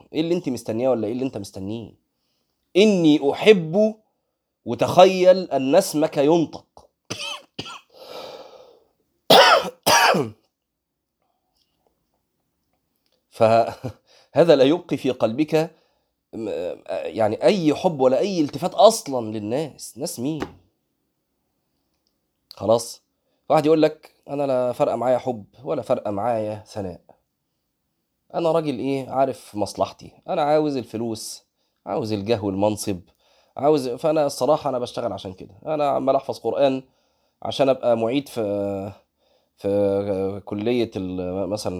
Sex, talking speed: male, 105 wpm